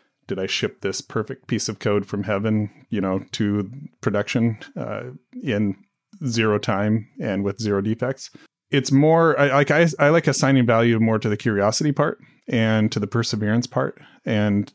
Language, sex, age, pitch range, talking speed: English, male, 30-49, 105-125 Hz, 170 wpm